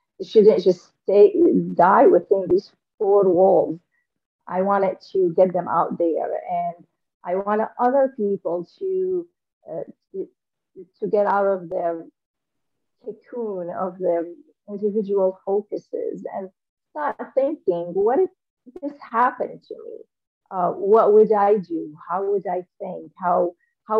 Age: 40-59